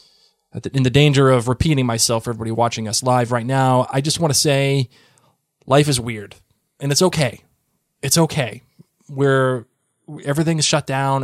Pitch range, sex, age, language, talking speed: 120-155 Hz, male, 20-39, English, 155 wpm